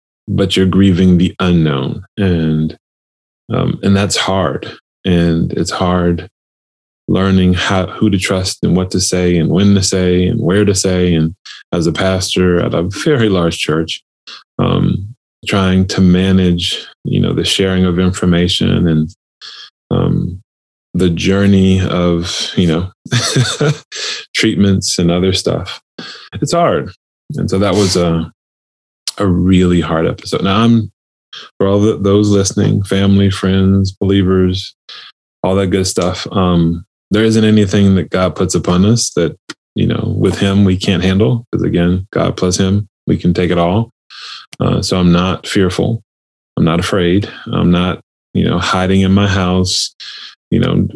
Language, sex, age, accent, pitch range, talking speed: English, male, 20-39, American, 90-100 Hz, 155 wpm